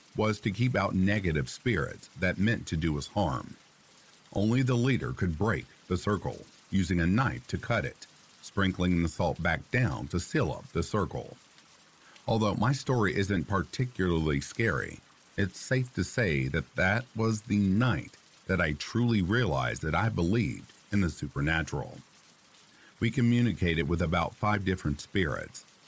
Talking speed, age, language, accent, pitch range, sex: 155 wpm, 50-69, English, American, 85-115 Hz, male